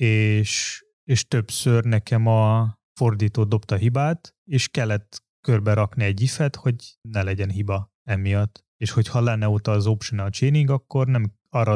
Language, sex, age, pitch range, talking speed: Hungarian, male, 20-39, 105-120 Hz, 150 wpm